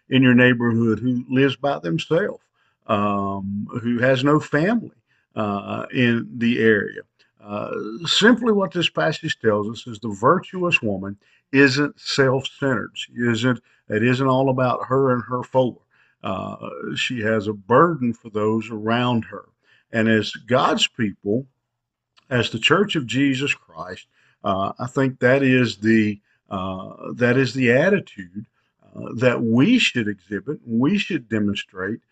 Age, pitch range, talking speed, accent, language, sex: 50-69, 110-145 Hz, 145 wpm, American, English, male